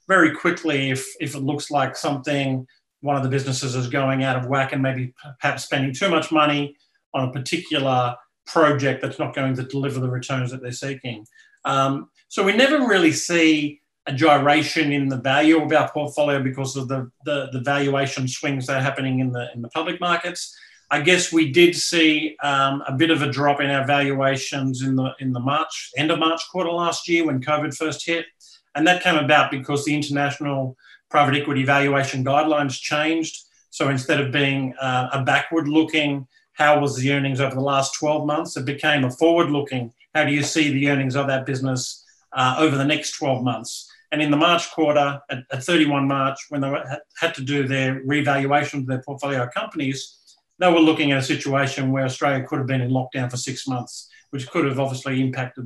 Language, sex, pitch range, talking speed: English, male, 135-150 Hz, 200 wpm